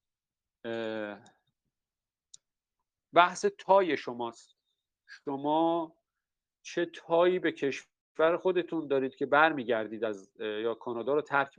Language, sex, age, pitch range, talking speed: Persian, male, 50-69, 110-145 Hz, 90 wpm